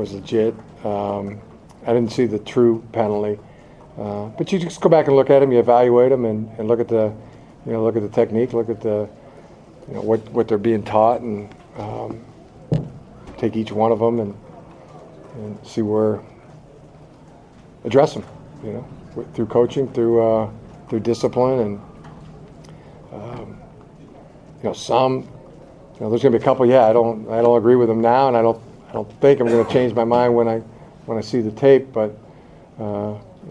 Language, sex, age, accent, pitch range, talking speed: English, male, 50-69, American, 110-130 Hz, 190 wpm